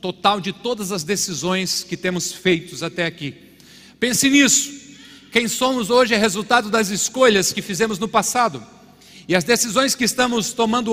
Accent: Brazilian